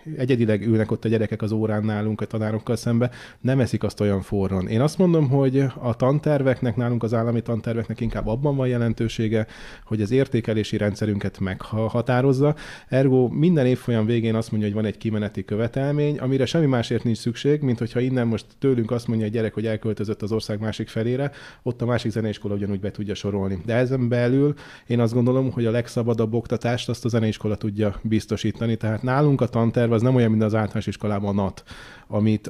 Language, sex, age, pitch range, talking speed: Hungarian, male, 30-49, 110-125 Hz, 185 wpm